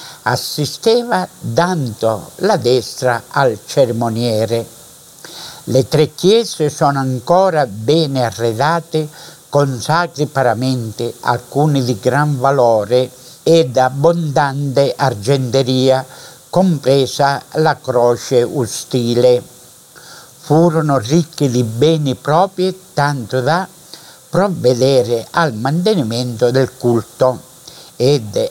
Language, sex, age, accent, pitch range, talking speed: Italian, male, 60-79, native, 125-160 Hz, 85 wpm